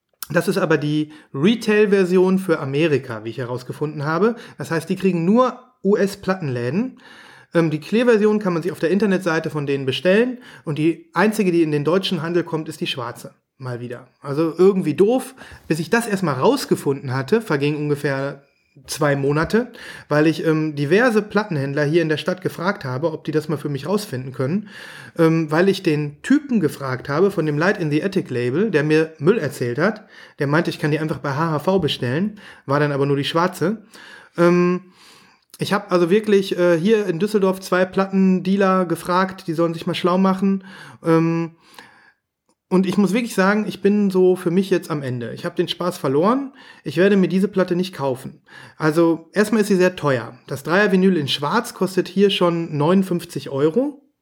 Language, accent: German, German